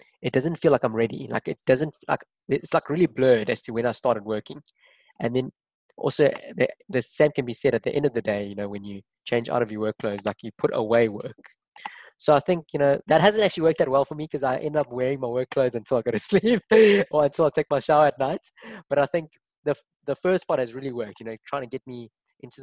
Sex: male